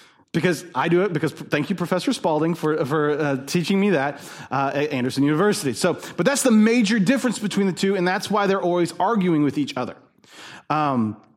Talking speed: 200 wpm